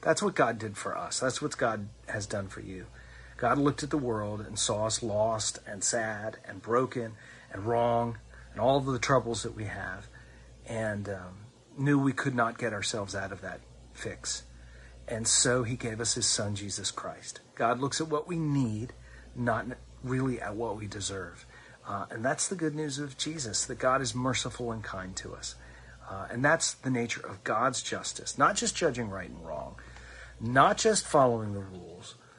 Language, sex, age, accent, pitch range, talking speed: English, male, 40-59, American, 95-125 Hz, 195 wpm